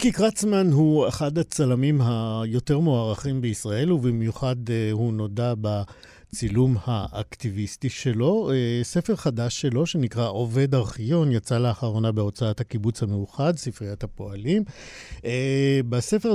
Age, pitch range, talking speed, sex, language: 50-69, 105-135 Hz, 105 wpm, male, Hebrew